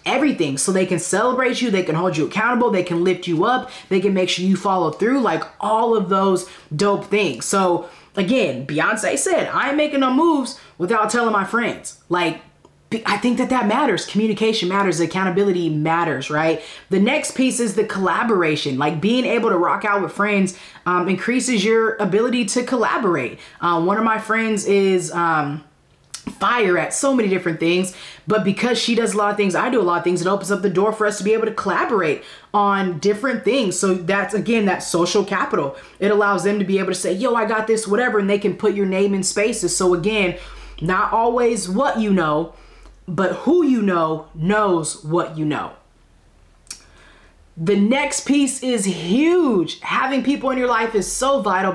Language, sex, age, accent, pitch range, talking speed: English, female, 20-39, American, 180-225 Hz, 195 wpm